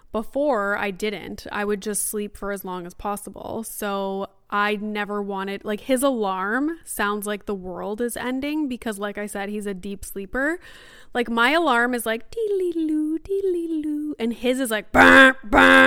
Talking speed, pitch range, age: 170 wpm, 200-255 Hz, 20-39